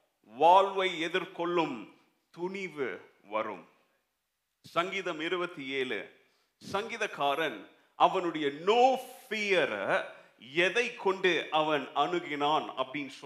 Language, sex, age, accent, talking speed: Tamil, male, 40-59, native, 60 wpm